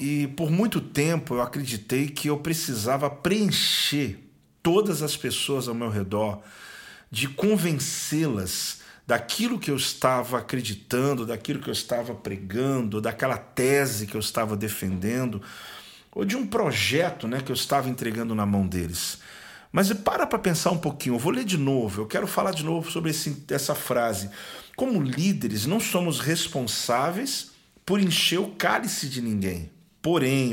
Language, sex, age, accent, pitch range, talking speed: Portuguese, male, 40-59, Brazilian, 120-170 Hz, 150 wpm